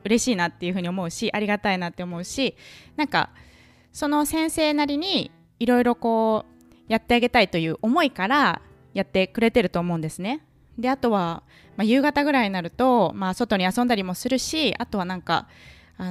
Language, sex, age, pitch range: Japanese, female, 20-39, 175-250 Hz